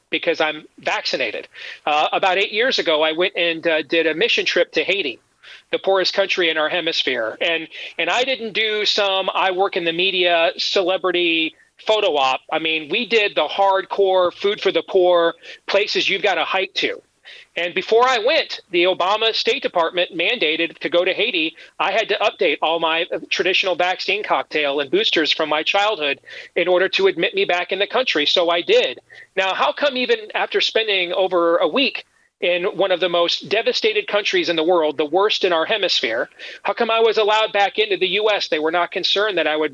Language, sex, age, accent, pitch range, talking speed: English, male, 40-59, American, 170-240 Hz, 200 wpm